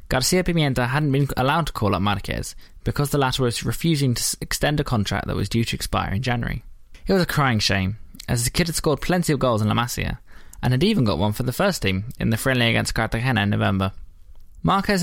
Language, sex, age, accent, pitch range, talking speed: English, male, 20-39, British, 105-145 Hz, 230 wpm